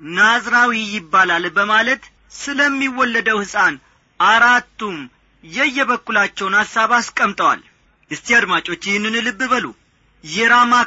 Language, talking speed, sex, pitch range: Amharic, 85 wpm, male, 190-255 Hz